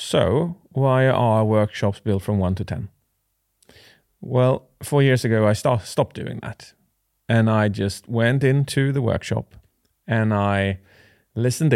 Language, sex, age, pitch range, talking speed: English, male, 30-49, 105-130 Hz, 140 wpm